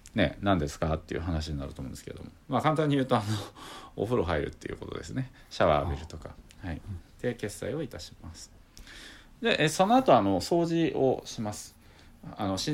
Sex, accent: male, native